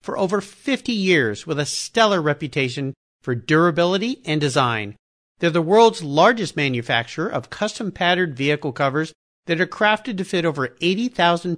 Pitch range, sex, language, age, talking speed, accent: 140-210 Hz, male, English, 50-69, 145 wpm, American